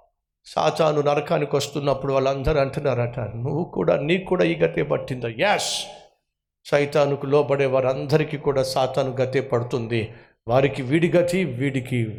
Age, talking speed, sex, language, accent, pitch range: 50-69, 105 wpm, male, Telugu, native, 130-220 Hz